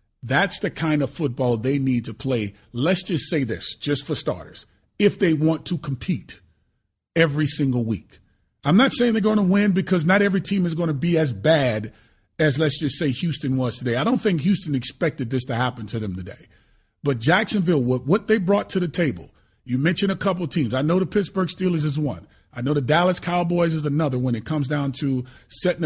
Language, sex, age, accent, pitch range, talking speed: English, male, 30-49, American, 130-180 Hz, 215 wpm